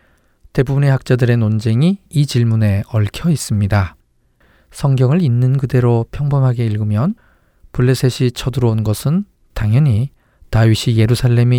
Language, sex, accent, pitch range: Korean, male, native, 110-140 Hz